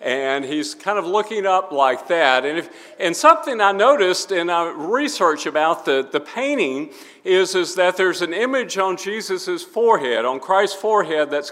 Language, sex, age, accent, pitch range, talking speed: English, male, 50-69, American, 145-195 Hz, 165 wpm